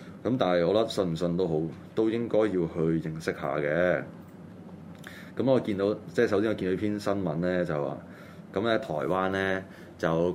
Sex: male